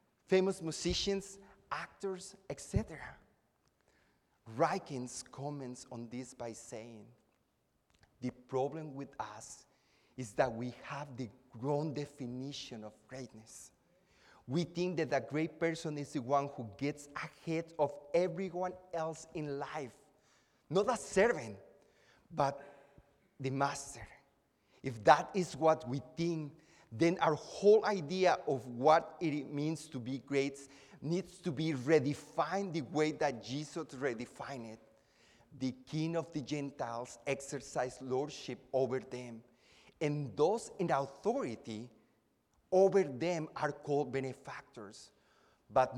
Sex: male